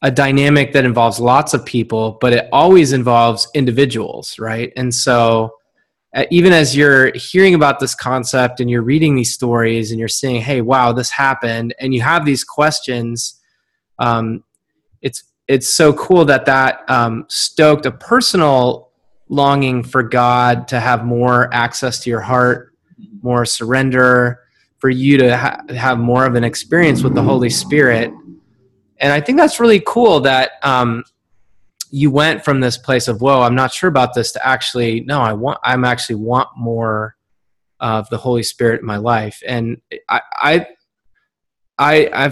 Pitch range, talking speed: 120-140 Hz, 165 wpm